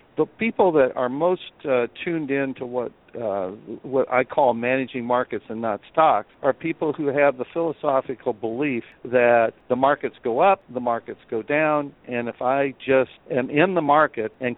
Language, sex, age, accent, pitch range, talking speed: English, male, 60-79, American, 125-150 Hz, 180 wpm